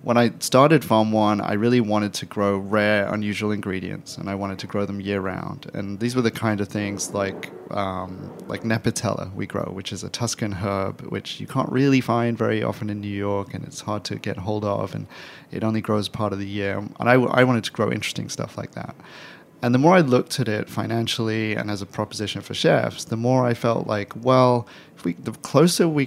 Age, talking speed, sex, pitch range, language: 30-49, 225 wpm, male, 100-120 Hz, English